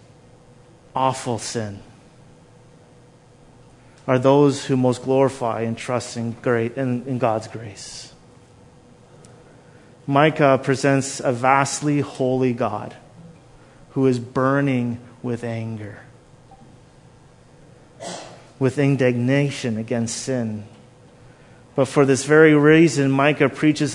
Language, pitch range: English, 125-145 Hz